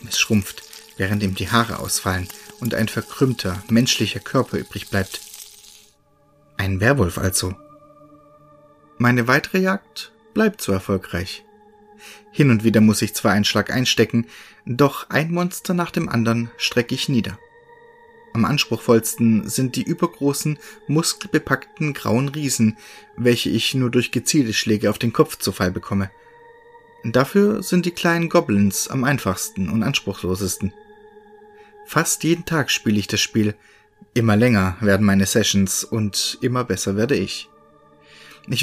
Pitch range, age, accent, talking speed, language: 110-165 Hz, 30-49, German, 135 wpm, German